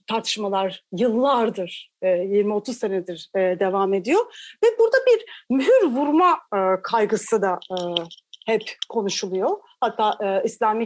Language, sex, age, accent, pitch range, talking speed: Turkish, female, 40-59, native, 220-345 Hz, 95 wpm